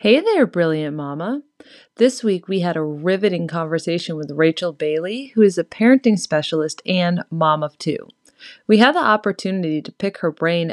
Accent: American